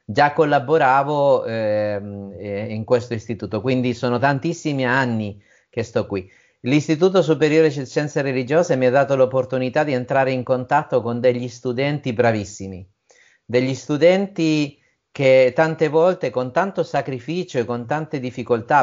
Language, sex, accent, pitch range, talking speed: Italian, male, native, 115-140 Hz, 135 wpm